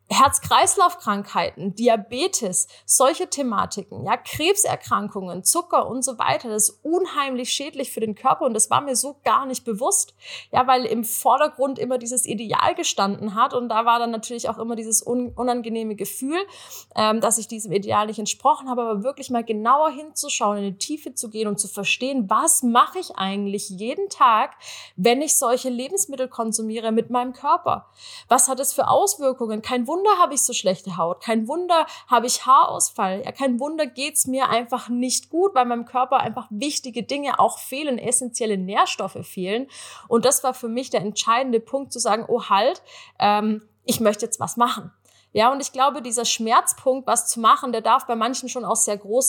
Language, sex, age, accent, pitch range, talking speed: German, female, 20-39, German, 215-270 Hz, 185 wpm